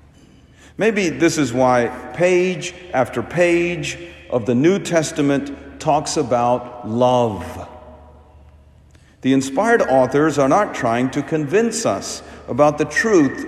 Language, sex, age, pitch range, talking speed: English, male, 50-69, 120-180 Hz, 115 wpm